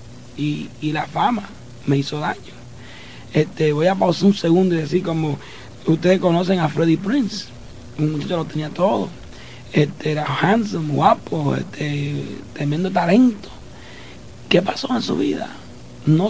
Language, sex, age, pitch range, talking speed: Spanish, male, 60-79, 150-210 Hz, 145 wpm